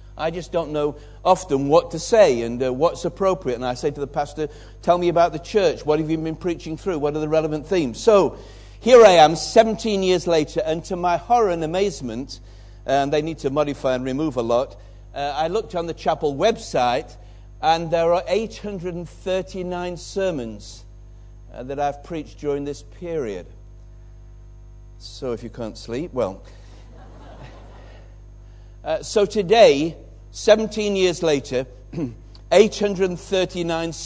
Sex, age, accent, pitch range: male, 60-79, British, 105-170 Hz